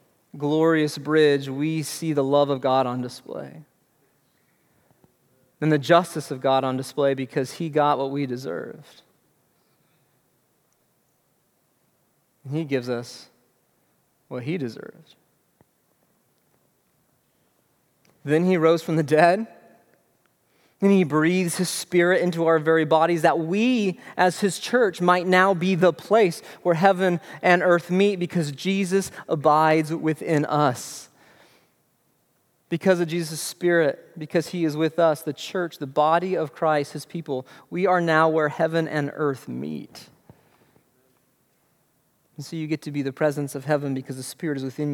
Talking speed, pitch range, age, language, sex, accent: 140 wpm, 145-175 Hz, 30-49, English, male, American